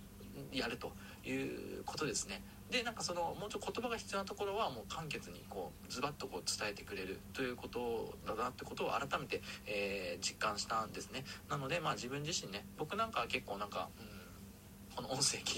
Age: 40-59